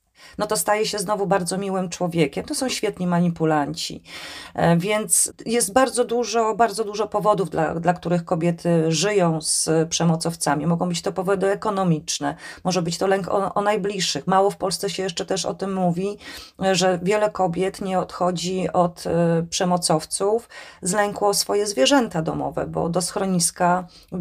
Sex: female